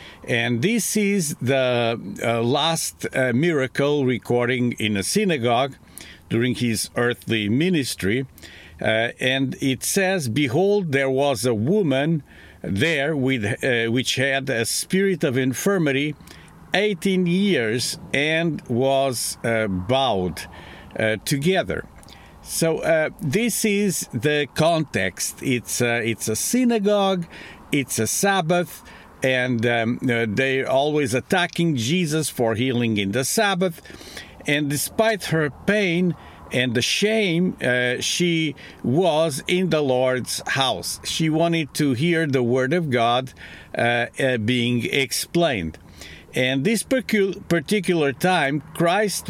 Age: 50-69